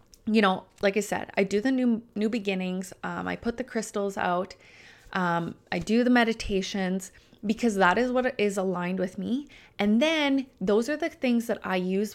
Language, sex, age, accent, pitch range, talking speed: English, female, 20-39, American, 190-250 Hz, 195 wpm